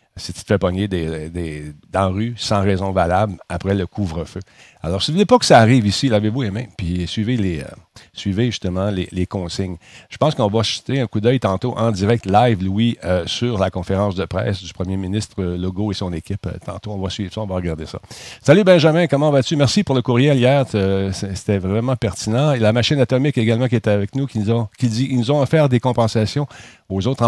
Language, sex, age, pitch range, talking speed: French, male, 50-69, 95-125 Hz, 235 wpm